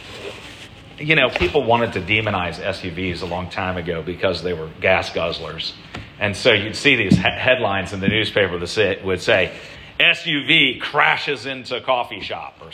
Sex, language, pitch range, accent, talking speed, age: male, English, 100-145 Hz, American, 170 wpm, 40-59